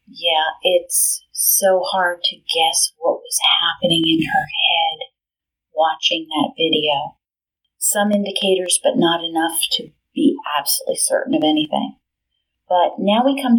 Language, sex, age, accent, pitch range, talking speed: English, female, 40-59, American, 185-265 Hz, 130 wpm